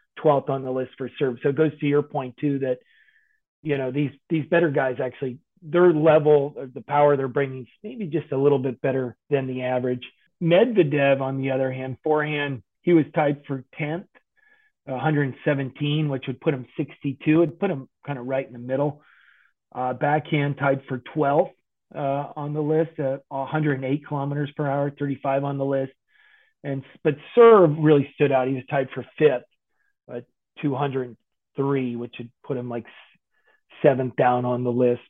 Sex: male